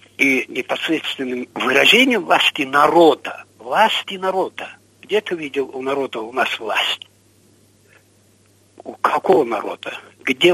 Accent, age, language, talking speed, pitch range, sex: native, 60-79, Russian, 110 wpm, 125-210 Hz, male